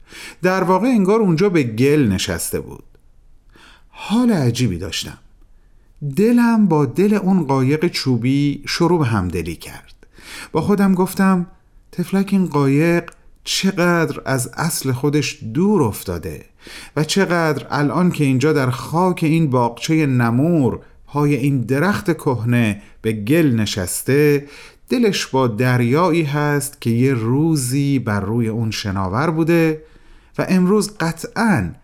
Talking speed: 125 wpm